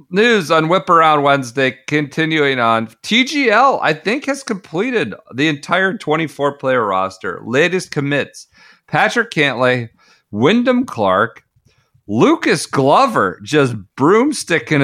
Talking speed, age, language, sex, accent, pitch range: 110 wpm, 40-59, English, male, American, 115-160 Hz